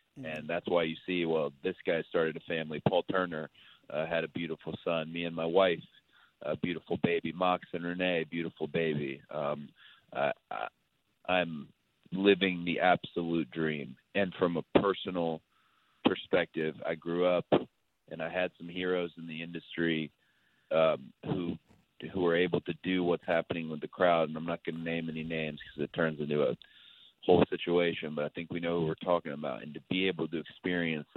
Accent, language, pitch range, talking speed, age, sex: American, English, 80-90 Hz, 185 wpm, 30-49, male